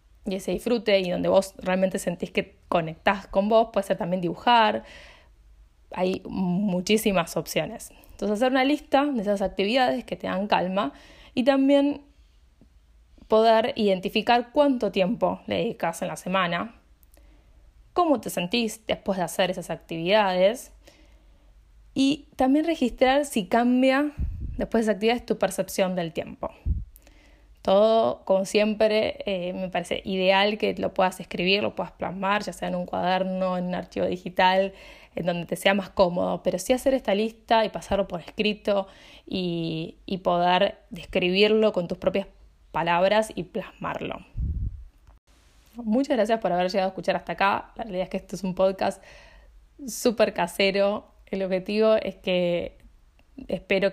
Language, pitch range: Spanish, 180-225 Hz